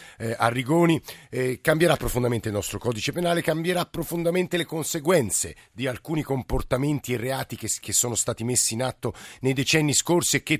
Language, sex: Italian, male